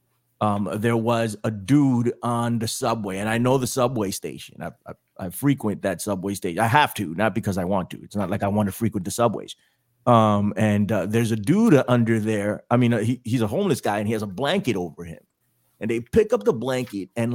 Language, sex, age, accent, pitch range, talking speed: English, male, 30-49, American, 110-140 Hz, 235 wpm